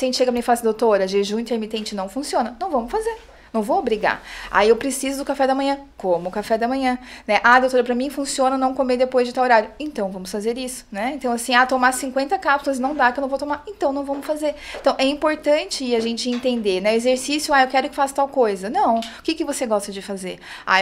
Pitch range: 215-265 Hz